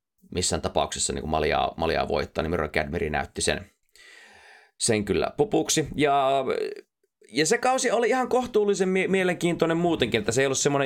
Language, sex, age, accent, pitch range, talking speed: Finnish, male, 30-49, native, 100-145 Hz, 145 wpm